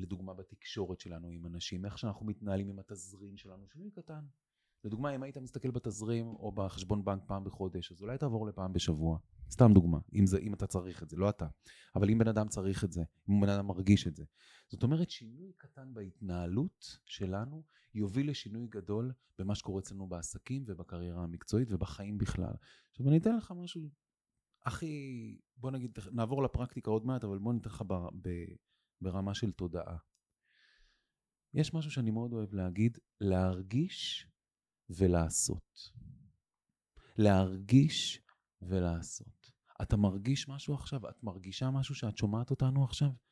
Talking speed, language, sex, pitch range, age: 145 wpm, Hebrew, male, 95-130 Hz, 30-49